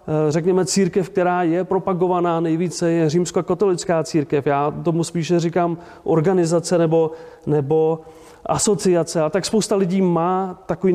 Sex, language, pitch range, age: male, Czech, 160-185 Hz, 30-49